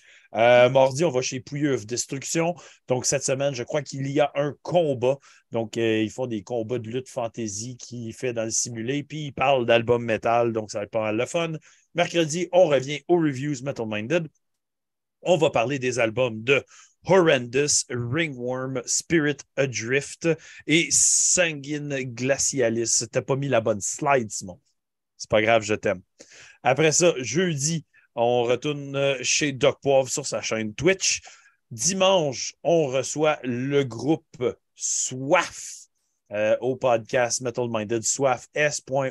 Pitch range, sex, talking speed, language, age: 115-145 Hz, male, 155 wpm, French, 30-49